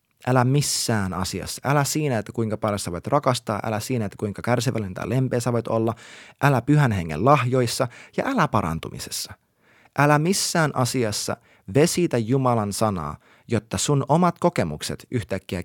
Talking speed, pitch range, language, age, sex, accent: 145 wpm, 105-140 Hz, Finnish, 30-49, male, native